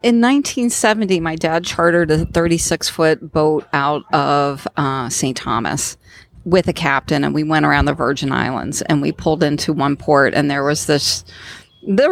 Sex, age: female, 40-59